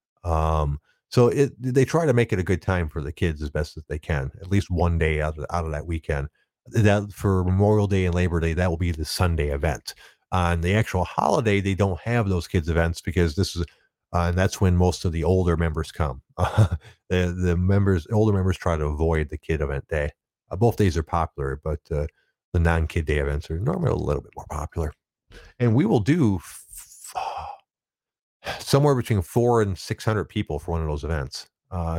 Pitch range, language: 80-100 Hz, English